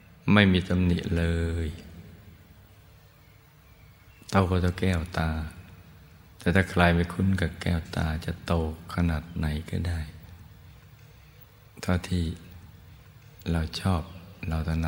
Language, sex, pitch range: Thai, male, 80-95 Hz